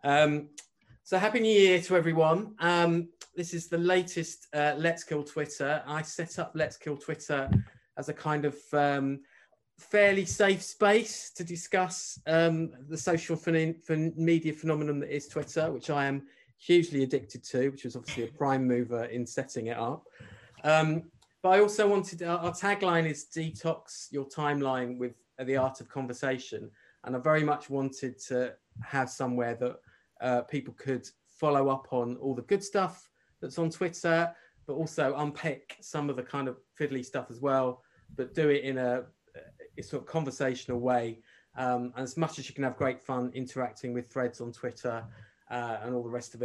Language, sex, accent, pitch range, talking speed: English, male, British, 125-165 Hz, 180 wpm